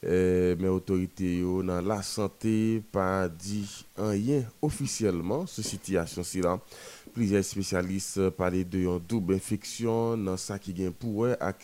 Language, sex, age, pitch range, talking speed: French, male, 30-49, 85-100 Hz, 130 wpm